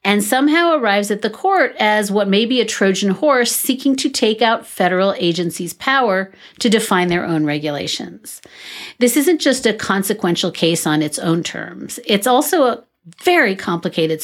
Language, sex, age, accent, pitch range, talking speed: English, female, 40-59, American, 165-235 Hz, 170 wpm